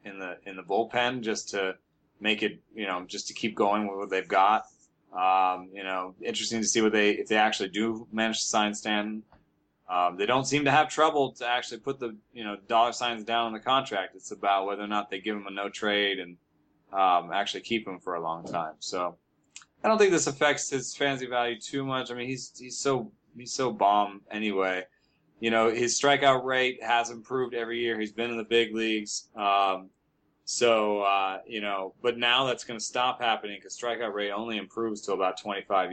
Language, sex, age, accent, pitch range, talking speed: English, male, 20-39, American, 100-120 Hz, 215 wpm